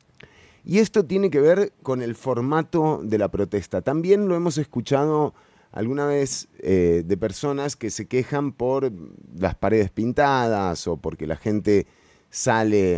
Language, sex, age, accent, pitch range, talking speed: Spanish, male, 30-49, Argentinian, 105-150 Hz, 150 wpm